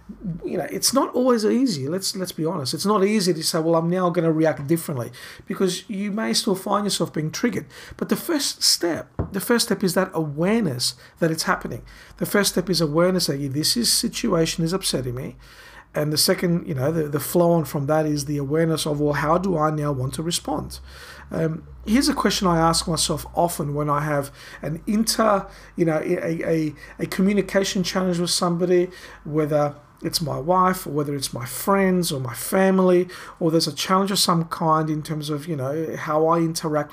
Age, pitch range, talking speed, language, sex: 50-69, 155-195 Hz, 210 wpm, English, male